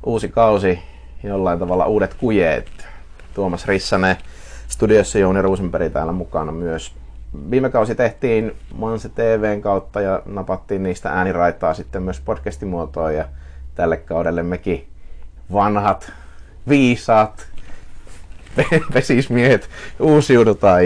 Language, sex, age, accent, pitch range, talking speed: Finnish, male, 30-49, native, 80-100 Hz, 100 wpm